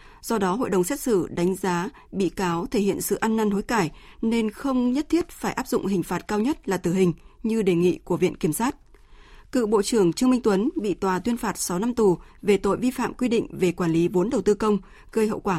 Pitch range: 185-230 Hz